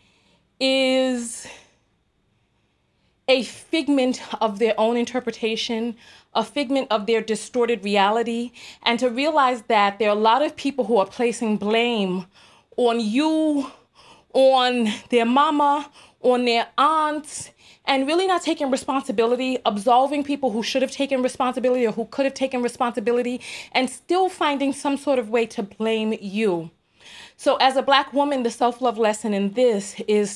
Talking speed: 145 wpm